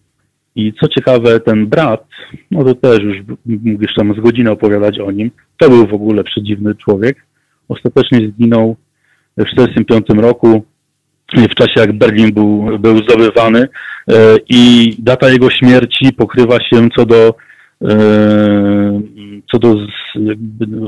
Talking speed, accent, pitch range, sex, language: 130 wpm, native, 105-120 Hz, male, Polish